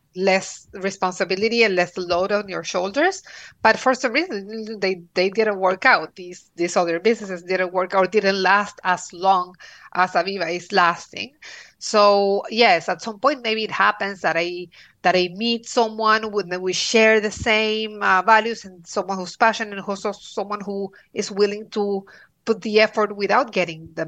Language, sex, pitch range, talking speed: English, female, 185-220 Hz, 175 wpm